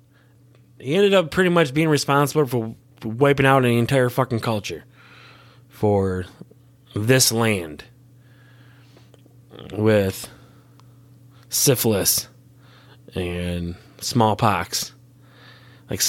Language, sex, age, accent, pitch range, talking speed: English, male, 20-39, American, 120-150 Hz, 80 wpm